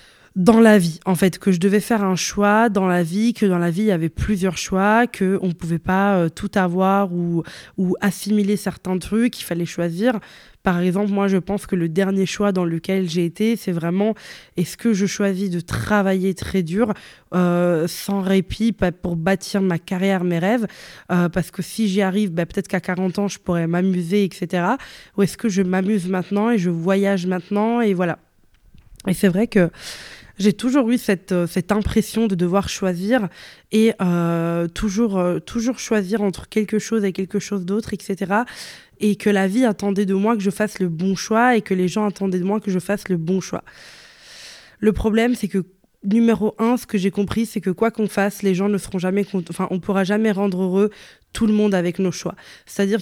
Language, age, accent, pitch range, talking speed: French, 20-39, French, 185-210 Hz, 210 wpm